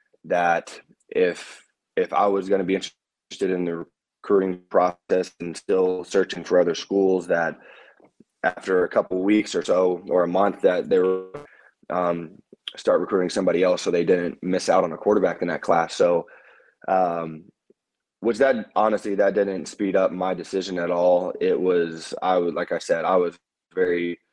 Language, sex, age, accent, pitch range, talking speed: English, male, 20-39, American, 85-100 Hz, 175 wpm